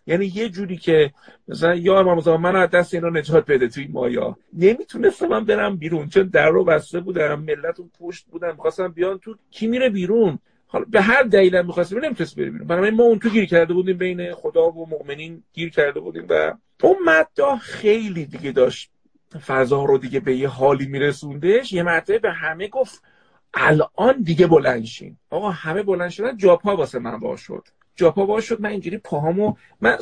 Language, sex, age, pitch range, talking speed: Persian, male, 50-69, 165-225 Hz, 190 wpm